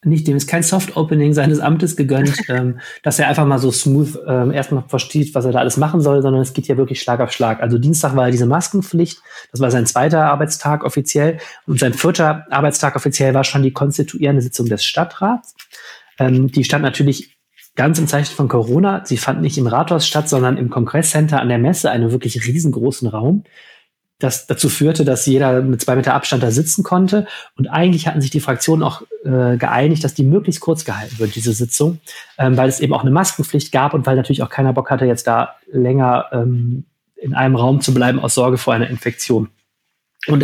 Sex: male